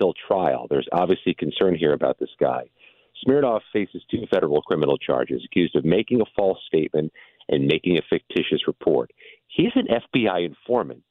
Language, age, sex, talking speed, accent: English, 50-69, male, 155 wpm, American